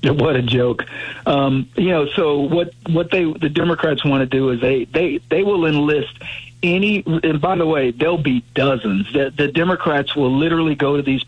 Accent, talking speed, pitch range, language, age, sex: American, 195 wpm, 130-165 Hz, English, 50-69, male